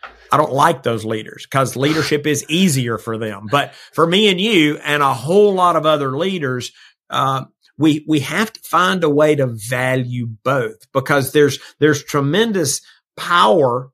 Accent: American